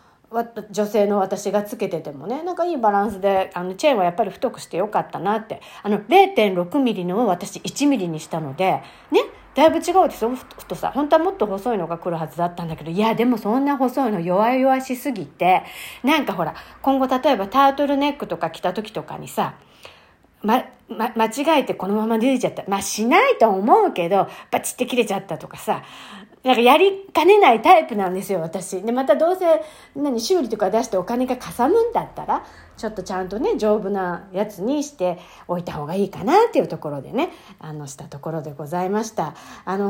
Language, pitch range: Japanese, 185-270 Hz